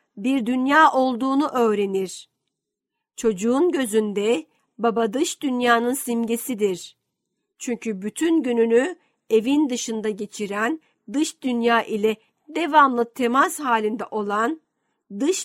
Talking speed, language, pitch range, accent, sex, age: 95 wpm, Turkish, 220-265 Hz, native, female, 50-69